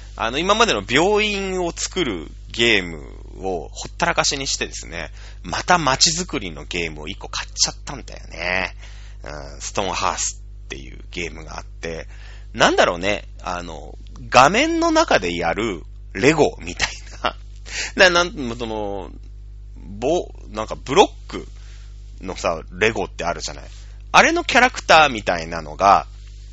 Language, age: Japanese, 30-49